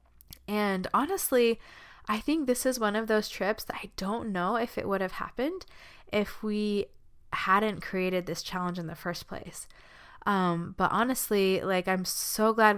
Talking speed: 170 wpm